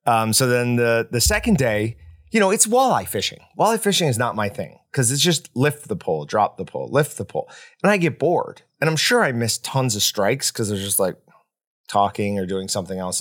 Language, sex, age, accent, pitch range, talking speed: English, male, 30-49, American, 100-130 Hz, 230 wpm